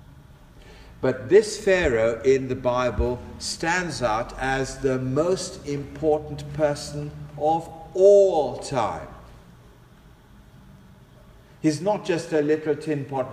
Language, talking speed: English, 100 wpm